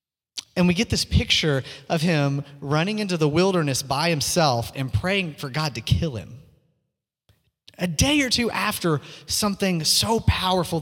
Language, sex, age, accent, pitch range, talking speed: English, male, 30-49, American, 140-185 Hz, 155 wpm